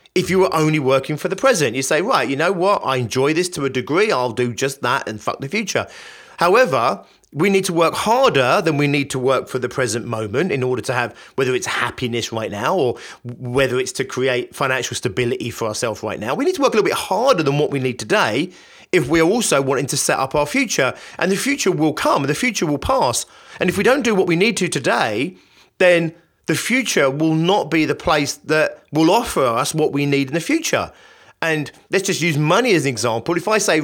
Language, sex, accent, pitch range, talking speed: English, male, British, 130-170 Hz, 240 wpm